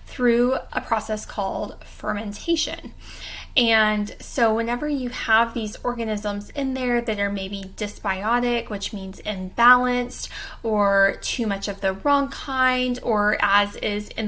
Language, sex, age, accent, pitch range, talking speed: English, female, 10-29, American, 195-245 Hz, 135 wpm